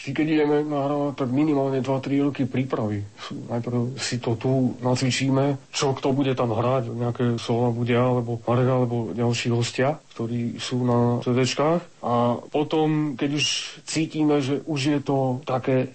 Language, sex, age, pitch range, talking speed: Slovak, male, 40-59, 120-140 Hz, 150 wpm